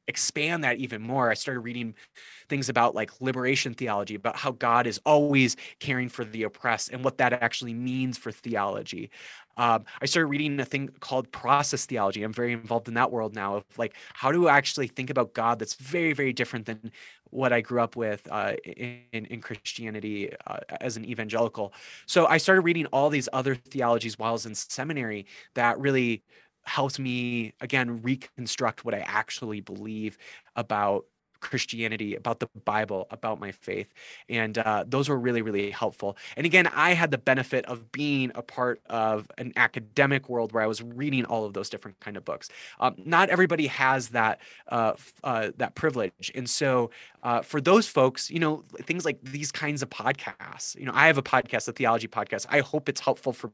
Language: English